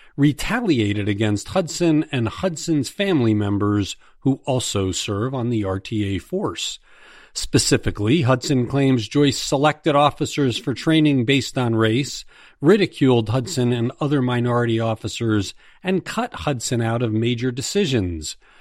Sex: male